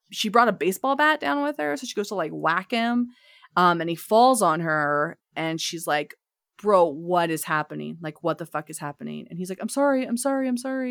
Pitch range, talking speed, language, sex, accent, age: 170-225 Hz, 235 wpm, English, female, American, 20-39